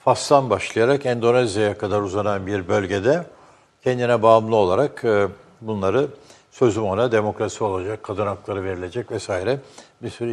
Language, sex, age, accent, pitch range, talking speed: Turkish, male, 60-79, native, 100-130 Hz, 120 wpm